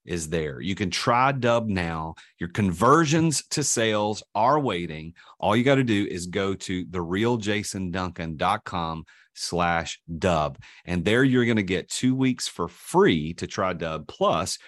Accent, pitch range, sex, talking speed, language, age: American, 90-120 Hz, male, 155 wpm, English, 40-59